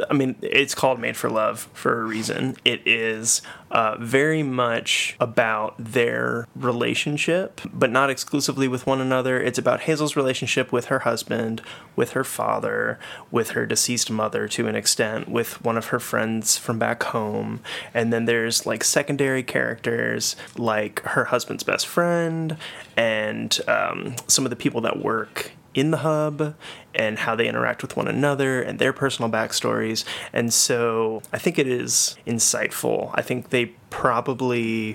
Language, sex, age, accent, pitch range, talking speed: English, male, 20-39, American, 115-135 Hz, 160 wpm